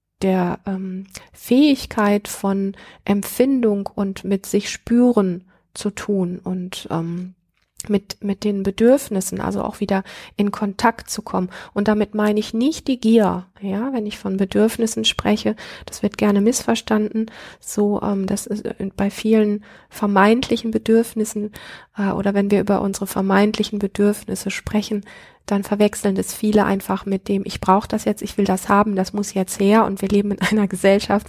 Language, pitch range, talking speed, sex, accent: German, 195-215 Hz, 160 wpm, female, German